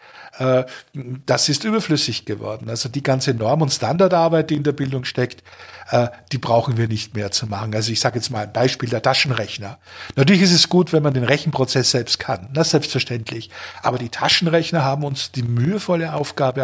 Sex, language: male, German